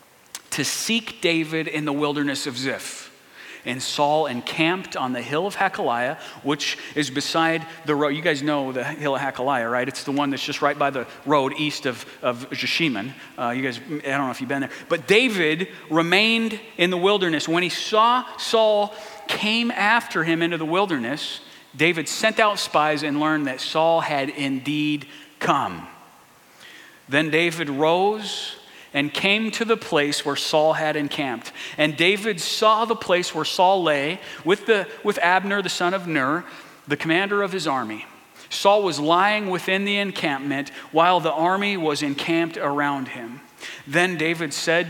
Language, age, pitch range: English, 40-59, 145-190 Hz